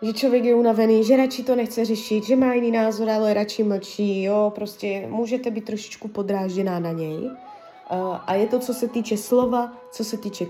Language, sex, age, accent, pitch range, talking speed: Czech, female, 20-39, native, 190-235 Hz, 195 wpm